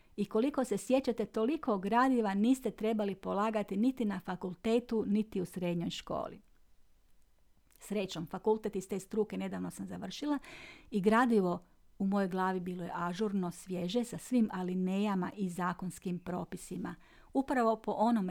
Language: Croatian